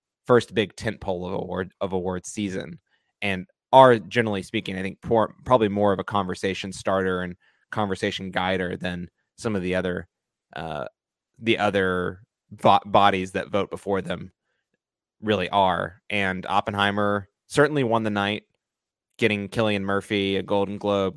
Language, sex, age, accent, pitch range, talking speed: English, male, 20-39, American, 90-105 Hz, 130 wpm